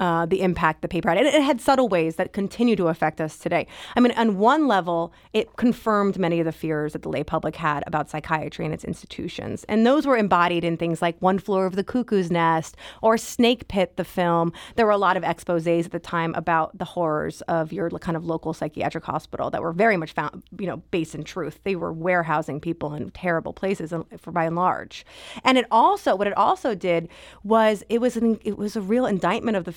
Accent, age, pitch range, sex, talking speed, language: American, 30-49, 170-225 Hz, female, 235 wpm, English